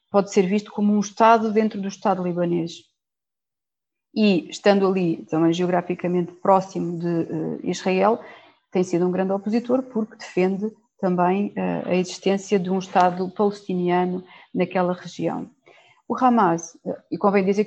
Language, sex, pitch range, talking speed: Portuguese, female, 180-220 Hz, 145 wpm